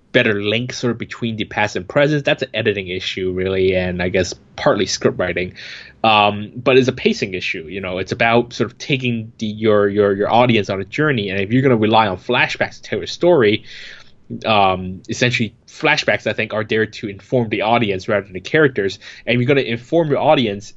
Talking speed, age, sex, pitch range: 220 wpm, 20-39, male, 105-125 Hz